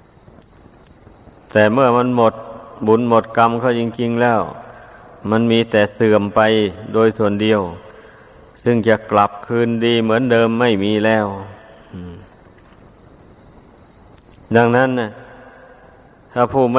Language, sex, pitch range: Thai, male, 110-120 Hz